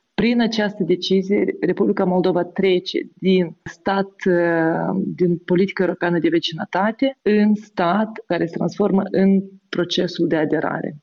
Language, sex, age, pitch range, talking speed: Romanian, female, 30-49, 180-210 Hz, 120 wpm